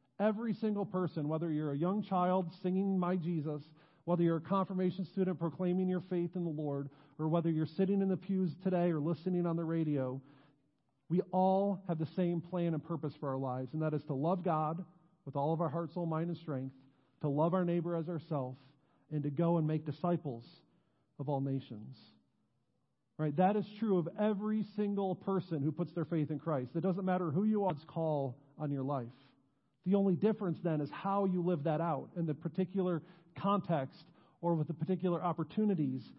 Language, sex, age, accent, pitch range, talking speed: English, male, 40-59, American, 155-190 Hz, 200 wpm